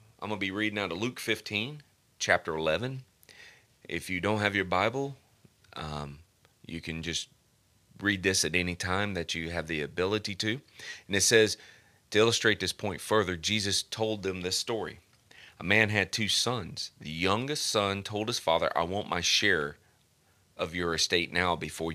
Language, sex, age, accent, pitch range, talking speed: English, male, 30-49, American, 90-110 Hz, 180 wpm